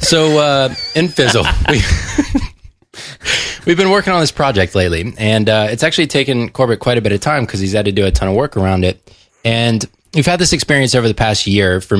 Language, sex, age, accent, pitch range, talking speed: English, male, 20-39, American, 95-125 Hz, 220 wpm